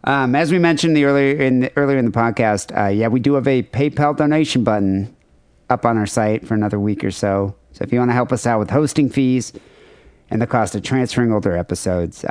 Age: 50-69